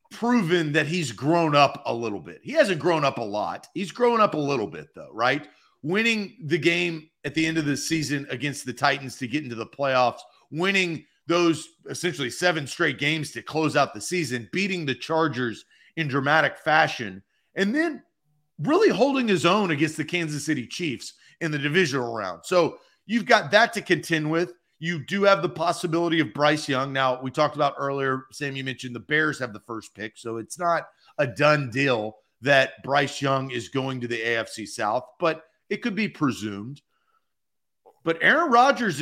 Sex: male